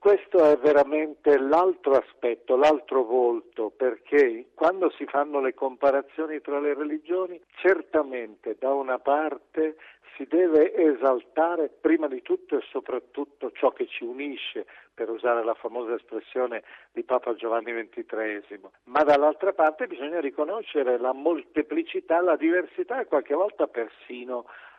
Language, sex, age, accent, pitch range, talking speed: Italian, male, 50-69, native, 130-180 Hz, 130 wpm